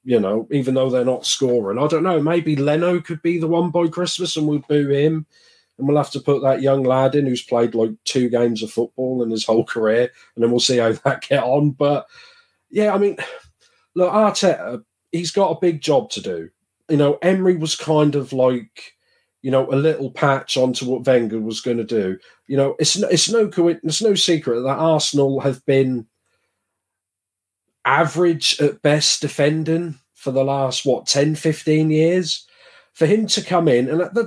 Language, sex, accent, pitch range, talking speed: English, male, British, 130-170 Hz, 200 wpm